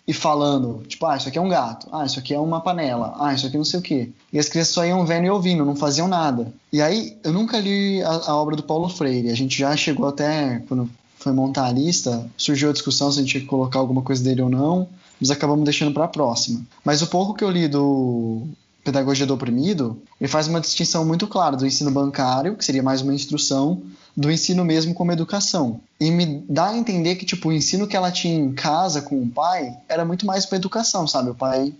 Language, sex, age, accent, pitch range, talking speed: Portuguese, male, 20-39, Brazilian, 130-170 Hz, 240 wpm